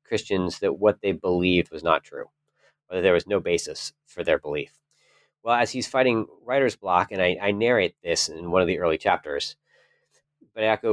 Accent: American